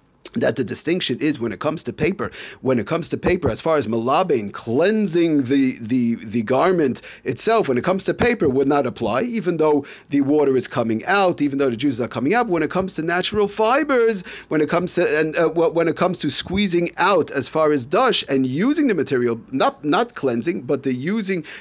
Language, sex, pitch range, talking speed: English, male, 130-175 Hz, 215 wpm